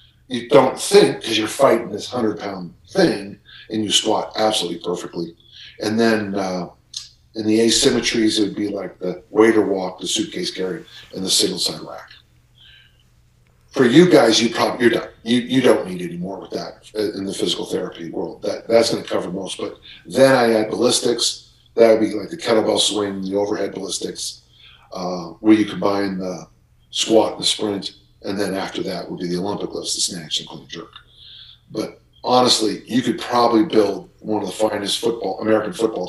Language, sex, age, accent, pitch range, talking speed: English, male, 50-69, American, 95-120 Hz, 190 wpm